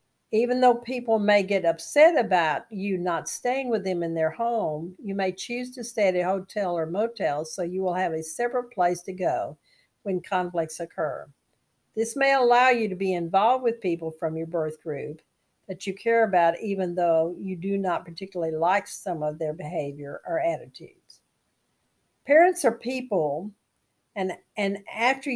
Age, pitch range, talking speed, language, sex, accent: 50-69, 170-220 Hz, 175 wpm, English, female, American